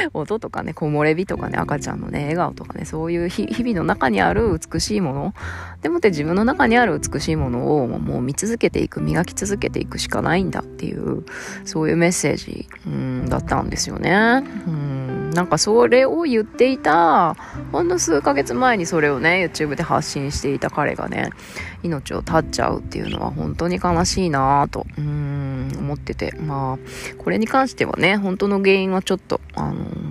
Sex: female